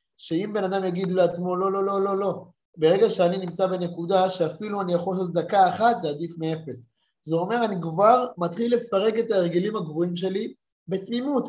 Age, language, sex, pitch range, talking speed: 20-39, Hebrew, male, 170-210 Hz, 180 wpm